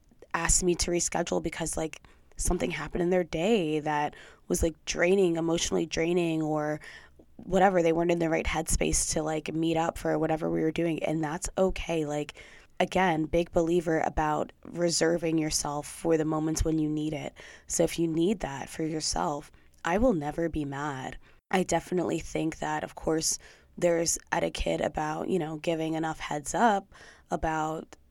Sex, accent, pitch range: female, American, 150-170 Hz